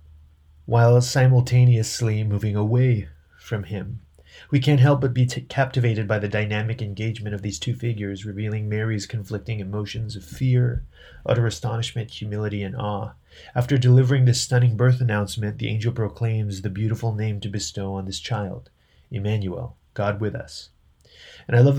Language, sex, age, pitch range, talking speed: English, male, 30-49, 100-120 Hz, 150 wpm